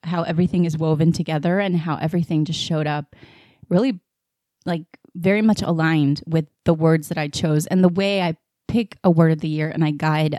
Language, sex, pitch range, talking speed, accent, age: English, female, 155-180 Hz, 200 wpm, American, 20-39